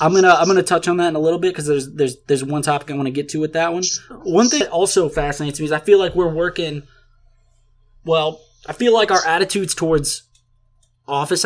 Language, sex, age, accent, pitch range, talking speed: English, male, 20-39, American, 125-170 Hz, 235 wpm